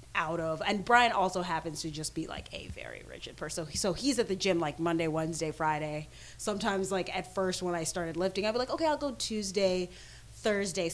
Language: English